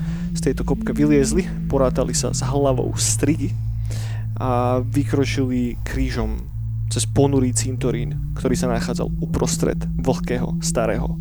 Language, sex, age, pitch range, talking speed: Slovak, male, 20-39, 125-165 Hz, 110 wpm